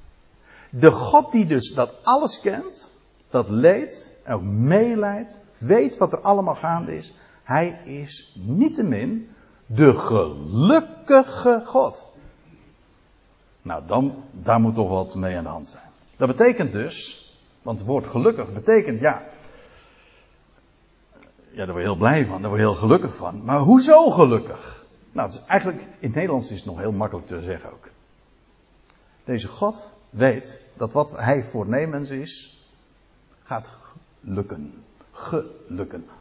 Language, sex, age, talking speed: Dutch, male, 60-79, 145 wpm